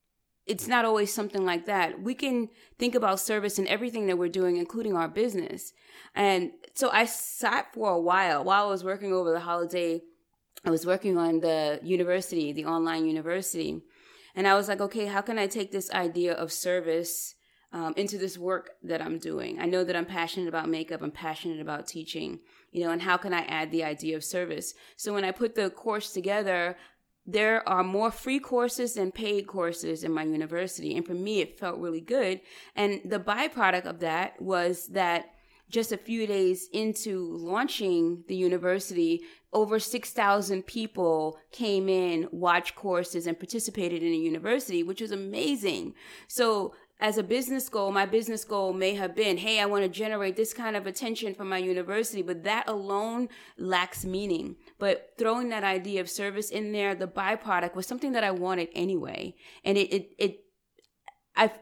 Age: 20-39